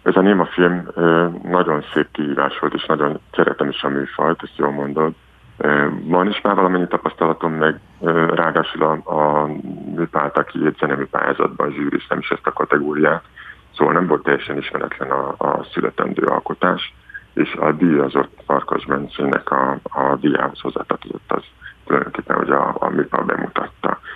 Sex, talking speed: male, 140 wpm